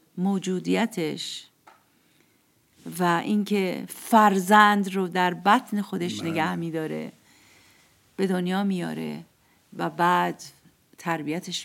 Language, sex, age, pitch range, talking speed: Persian, female, 50-69, 175-225 Hz, 80 wpm